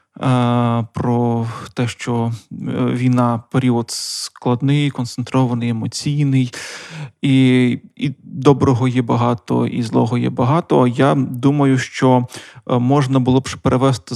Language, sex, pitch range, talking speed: Ukrainian, male, 125-145 Hz, 100 wpm